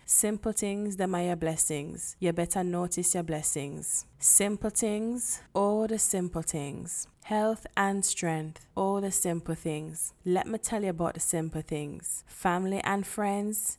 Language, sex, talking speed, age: English, female, 150 wpm, 10-29